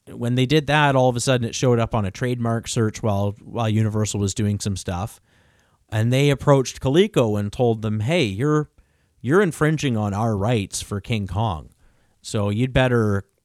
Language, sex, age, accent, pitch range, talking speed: English, male, 40-59, American, 90-125 Hz, 190 wpm